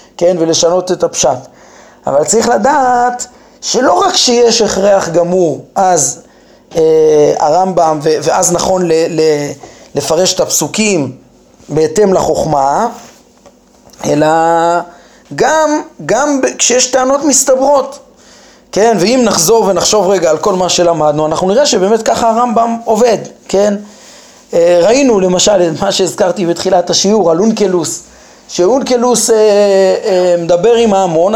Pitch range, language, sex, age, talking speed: 175-255 Hz, Hebrew, male, 30-49, 120 wpm